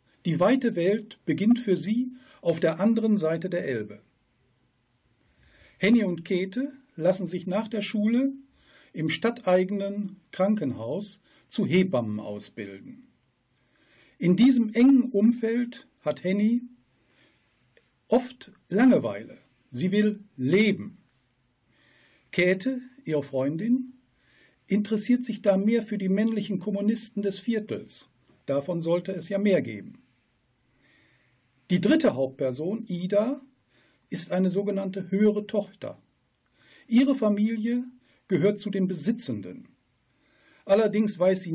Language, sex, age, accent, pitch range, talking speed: German, male, 50-69, German, 155-225 Hz, 105 wpm